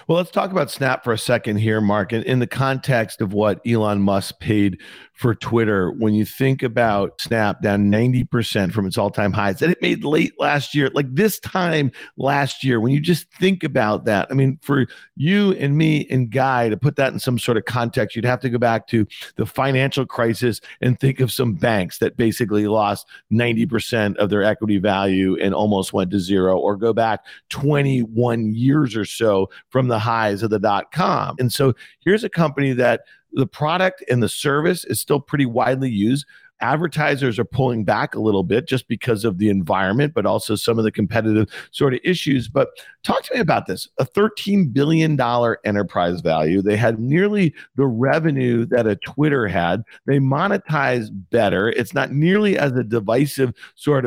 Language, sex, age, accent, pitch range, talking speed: English, male, 50-69, American, 110-140 Hz, 190 wpm